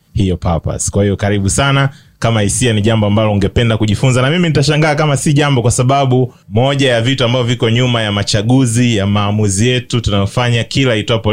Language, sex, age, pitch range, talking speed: English, male, 30-49, 100-125 Hz, 185 wpm